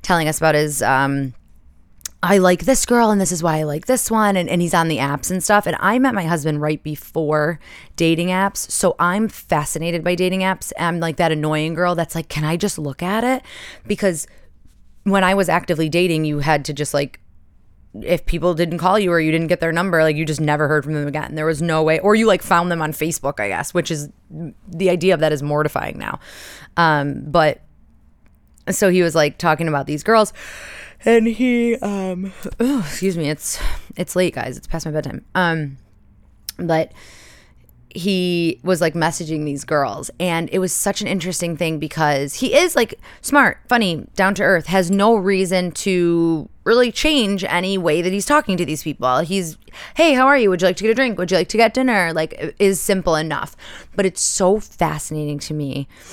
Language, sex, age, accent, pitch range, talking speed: English, female, 20-39, American, 150-190 Hz, 210 wpm